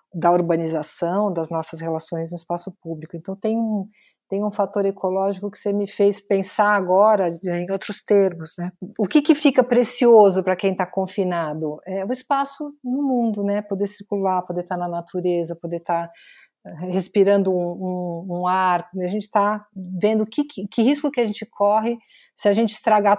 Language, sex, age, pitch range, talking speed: Portuguese, female, 50-69, 175-210 Hz, 185 wpm